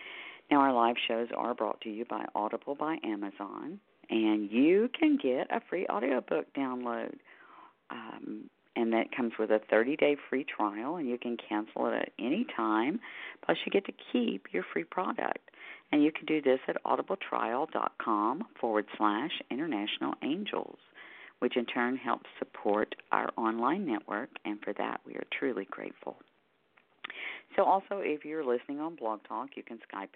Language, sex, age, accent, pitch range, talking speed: English, female, 50-69, American, 115-155 Hz, 165 wpm